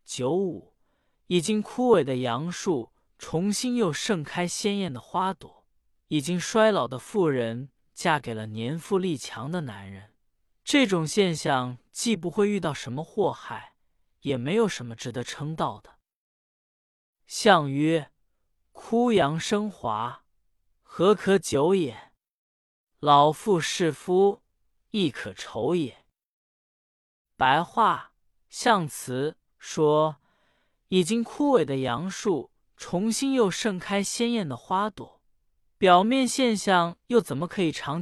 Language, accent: Chinese, native